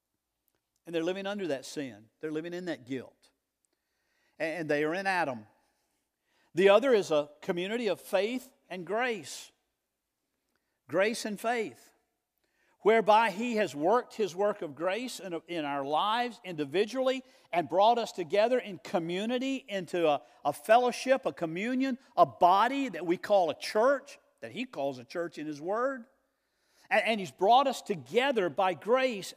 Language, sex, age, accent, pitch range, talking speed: English, male, 50-69, American, 155-235 Hz, 150 wpm